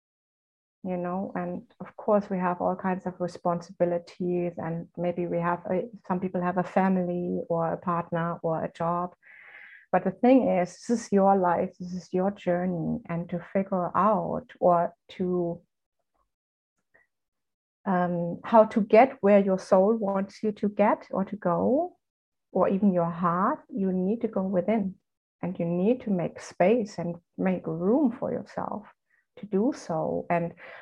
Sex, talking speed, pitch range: female, 160 wpm, 175-215 Hz